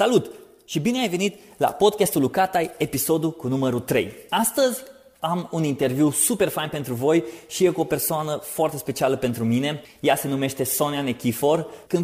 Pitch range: 130-190 Hz